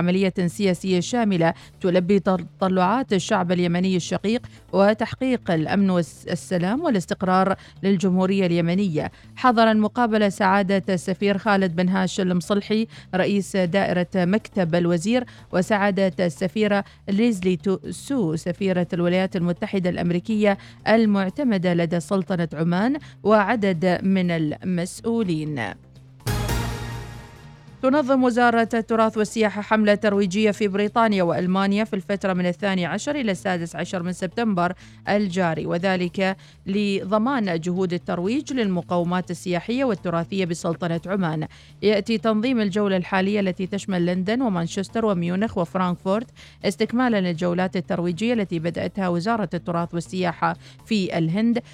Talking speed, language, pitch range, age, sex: 105 wpm, Arabic, 175-210 Hz, 40-59, female